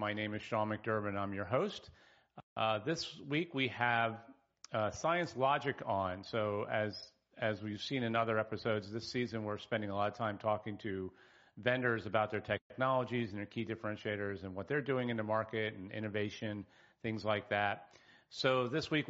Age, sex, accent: 40-59, male, American